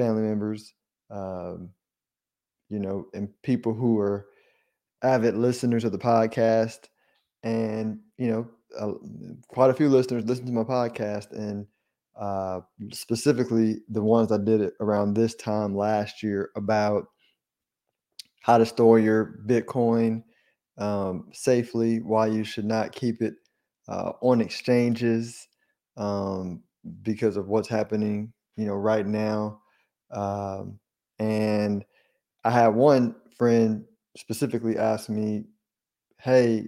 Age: 20-39